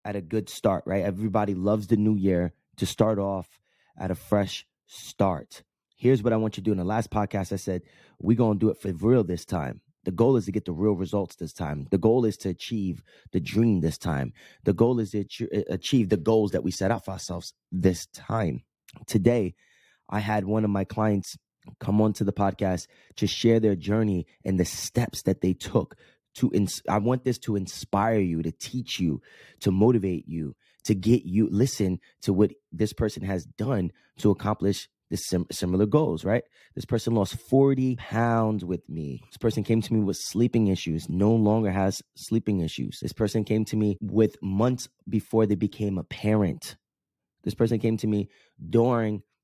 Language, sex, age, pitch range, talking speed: English, male, 20-39, 95-110 Hz, 200 wpm